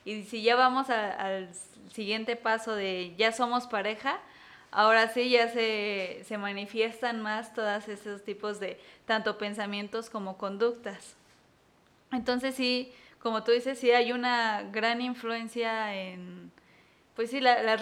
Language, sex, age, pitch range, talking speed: Spanish, female, 20-39, 205-240 Hz, 130 wpm